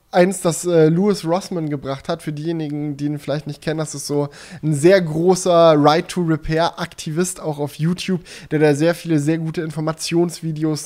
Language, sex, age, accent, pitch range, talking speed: German, male, 10-29, German, 150-180 Hz, 190 wpm